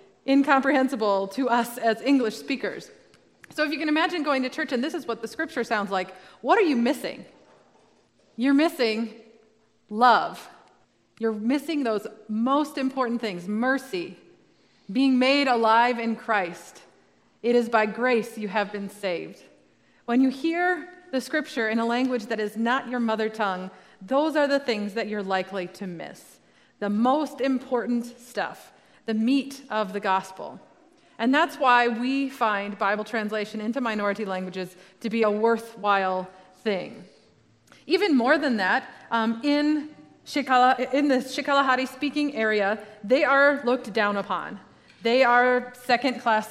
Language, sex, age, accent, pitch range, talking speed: English, female, 30-49, American, 210-265 Hz, 150 wpm